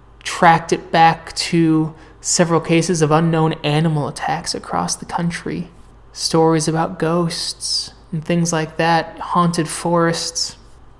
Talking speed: 120 wpm